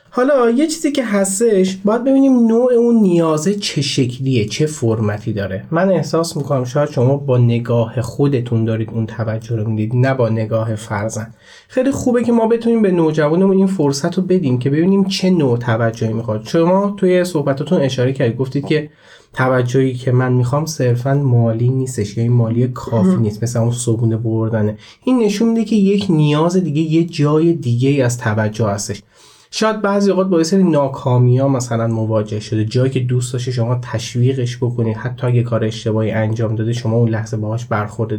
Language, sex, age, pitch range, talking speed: Persian, male, 30-49, 115-165 Hz, 175 wpm